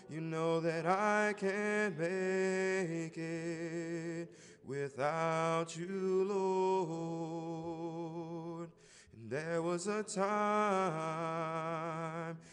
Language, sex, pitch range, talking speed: English, male, 165-205 Hz, 65 wpm